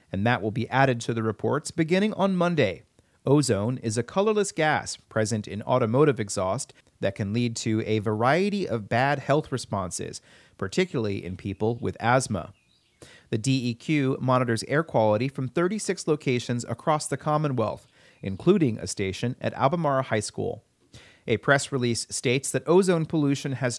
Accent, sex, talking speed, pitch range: American, male, 155 wpm, 110-145 Hz